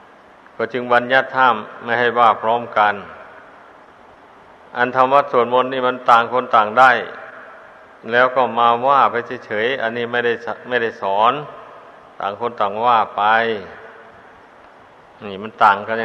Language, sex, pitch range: Thai, male, 120-130 Hz